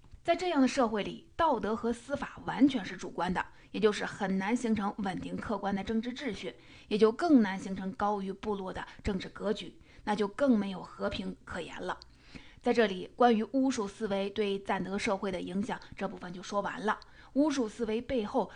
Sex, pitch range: female, 195-240 Hz